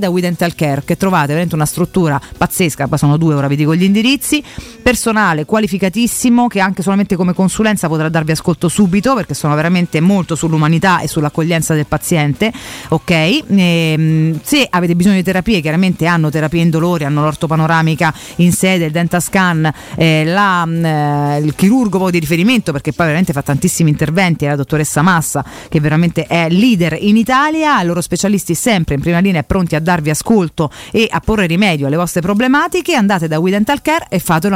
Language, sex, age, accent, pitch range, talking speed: Italian, female, 40-59, native, 160-215 Hz, 180 wpm